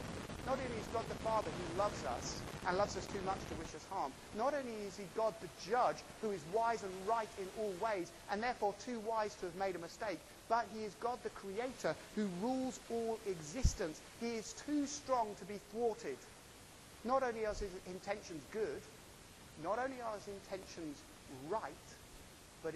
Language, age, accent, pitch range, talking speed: English, 30-49, British, 160-220 Hz, 190 wpm